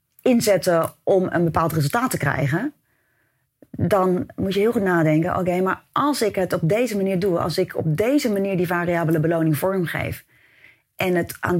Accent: Dutch